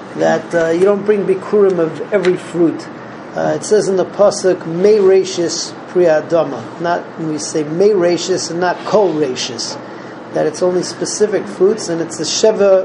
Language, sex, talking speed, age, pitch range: English, male, 160 wpm, 40-59, 165-195 Hz